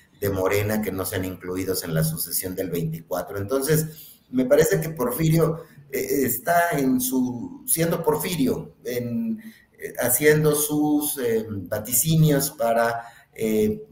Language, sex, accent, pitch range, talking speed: Spanish, male, Mexican, 95-150 Hz, 130 wpm